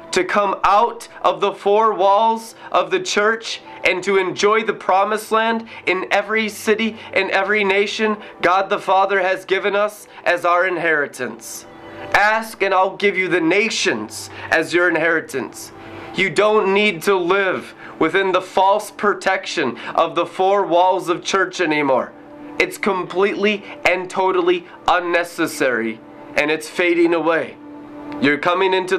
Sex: male